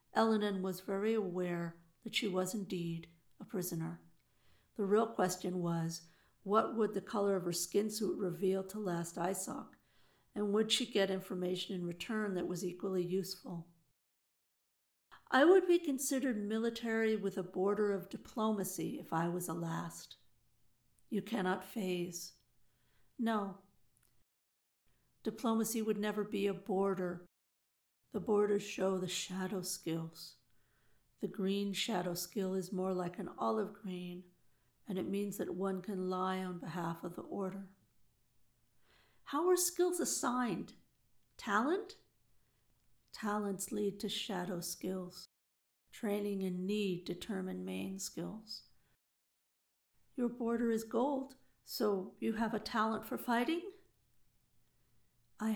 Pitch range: 180-215 Hz